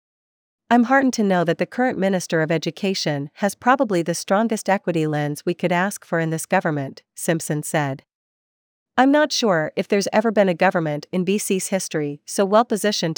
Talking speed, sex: 180 wpm, female